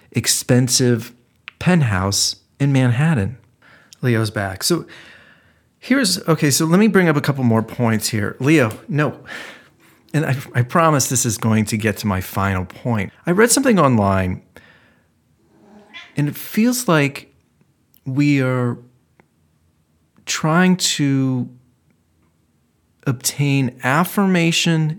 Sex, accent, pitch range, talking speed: male, American, 105-140 Hz, 115 wpm